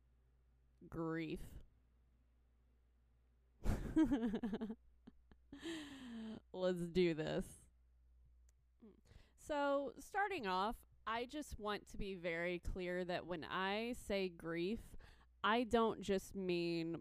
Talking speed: 80 wpm